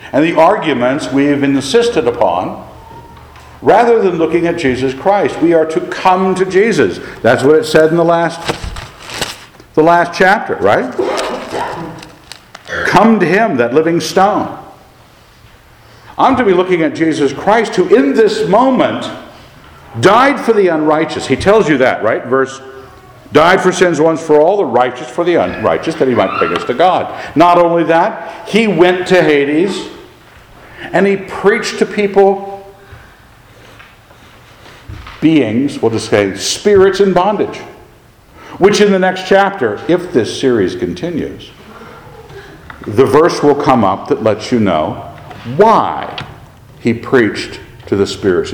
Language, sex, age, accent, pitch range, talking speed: English, male, 60-79, American, 130-195 Hz, 145 wpm